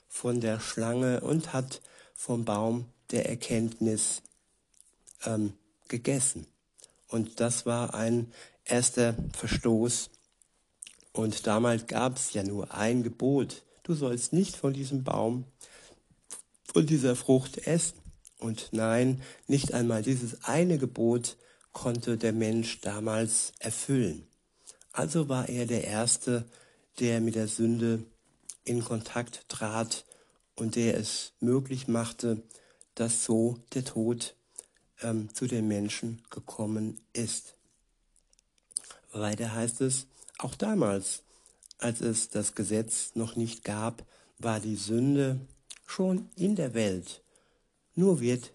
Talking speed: 115 wpm